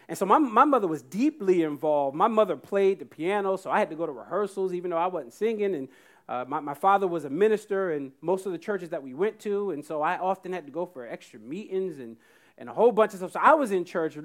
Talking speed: 270 wpm